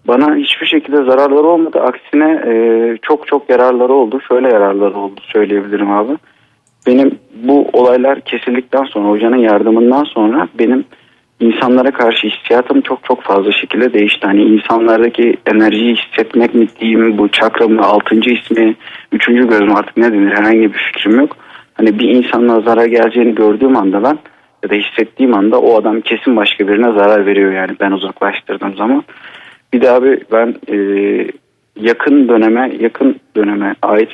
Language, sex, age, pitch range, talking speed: Turkish, male, 40-59, 105-125 Hz, 150 wpm